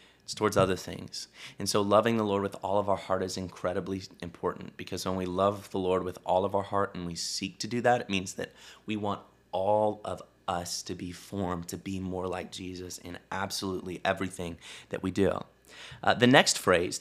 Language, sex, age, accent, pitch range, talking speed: English, male, 30-49, American, 95-110 Hz, 210 wpm